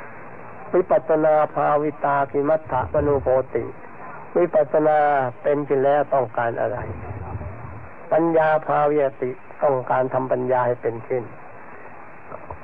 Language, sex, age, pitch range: Thai, male, 60-79, 125-150 Hz